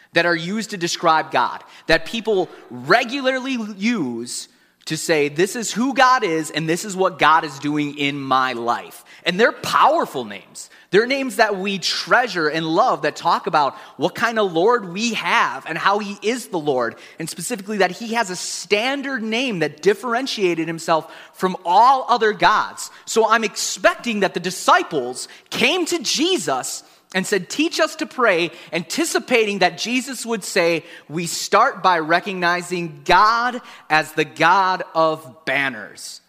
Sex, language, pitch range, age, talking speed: male, English, 165-230 Hz, 30-49, 160 wpm